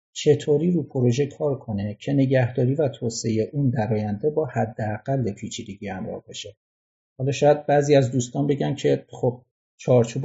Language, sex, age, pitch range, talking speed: Persian, male, 50-69, 115-150 Hz, 165 wpm